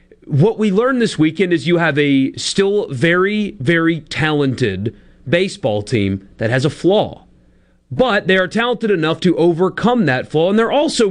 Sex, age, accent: male, 40-59, American